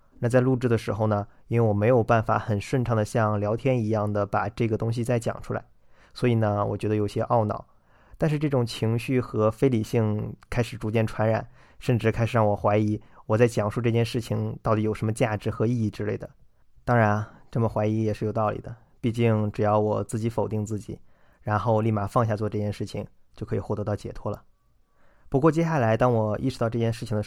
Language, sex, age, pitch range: Chinese, male, 20-39, 105-120 Hz